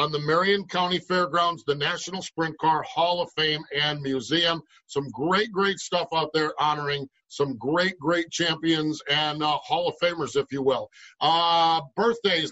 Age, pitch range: 50-69, 160-195 Hz